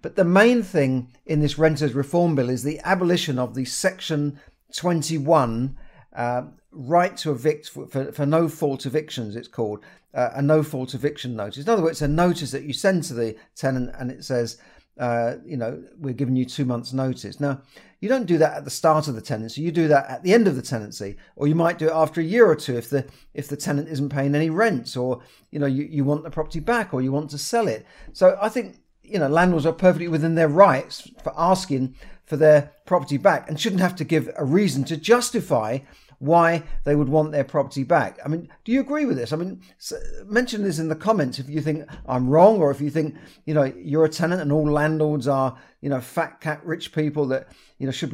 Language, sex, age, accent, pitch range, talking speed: English, male, 50-69, British, 135-165 Hz, 230 wpm